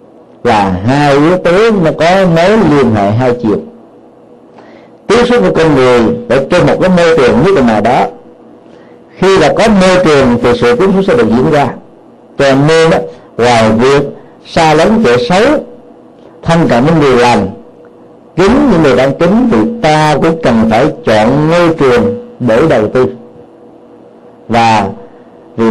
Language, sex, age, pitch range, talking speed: Vietnamese, male, 50-69, 120-170 Hz, 160 wpm